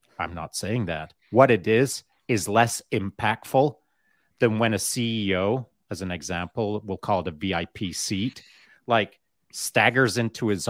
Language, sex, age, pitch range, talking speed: English, male, 30-49, 95-120 Hz, 150 wpm